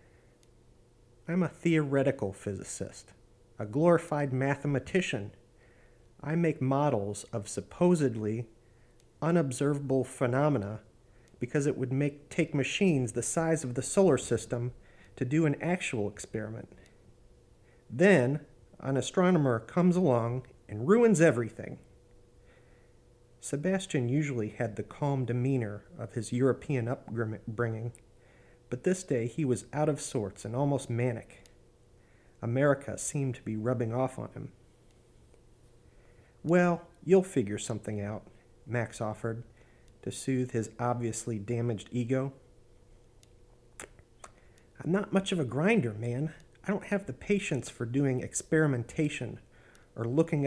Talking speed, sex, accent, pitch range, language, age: 115 wpm, male, American, 115-145 Hz, English, 40-59